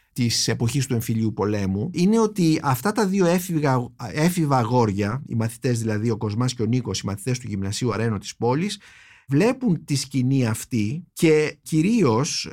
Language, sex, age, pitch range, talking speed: Greek, male, 50-69, 125-165 Hz, 160 wpm